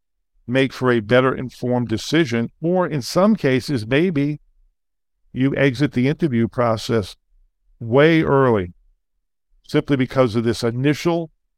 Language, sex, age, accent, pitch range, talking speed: English, male, 50-69, American, 115-145 Hz, 120 wpm